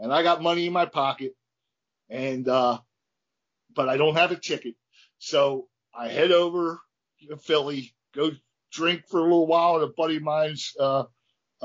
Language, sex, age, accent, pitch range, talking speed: English, male, 50-69, American, 130-175 Hz, 170 wpm